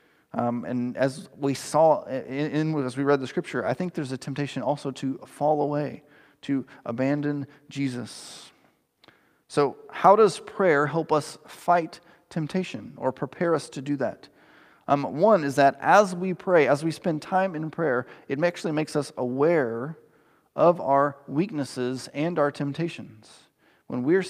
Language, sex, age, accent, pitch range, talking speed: English, male, 30-49, American, 135-160 Hz, 160 wpm